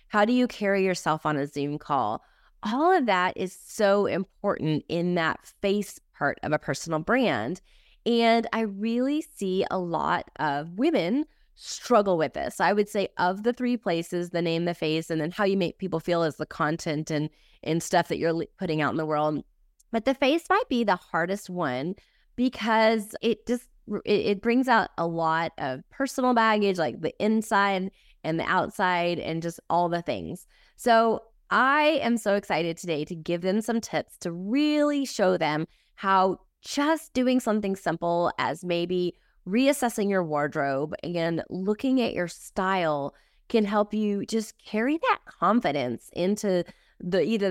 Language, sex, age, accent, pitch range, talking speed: English, female, 20-39, American, 170-230 Hz, 170 wpm